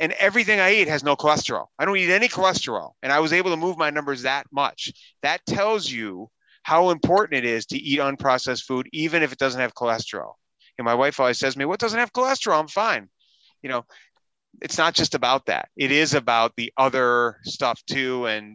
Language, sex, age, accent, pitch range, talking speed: English, male, 30-49, American, 115-160 Hz, 215 wpm